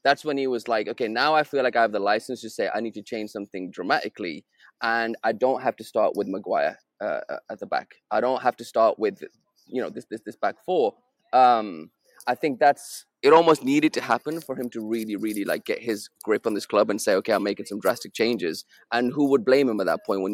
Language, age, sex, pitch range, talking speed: English, 20-39, male, 110-145 Hz, 250 wpm